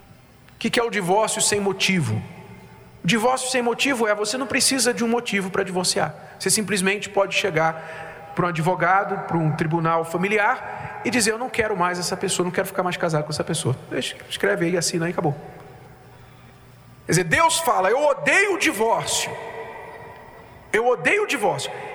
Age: 50-69